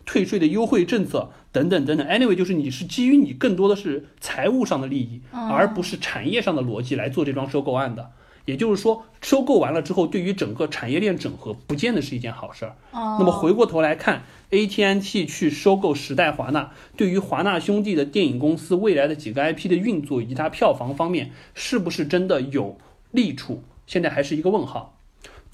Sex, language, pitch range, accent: male, Chinese, 140-200 Hz, native